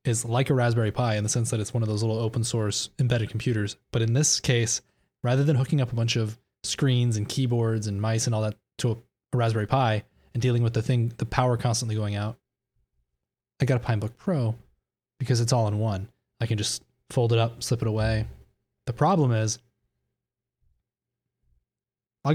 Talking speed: 200 wpm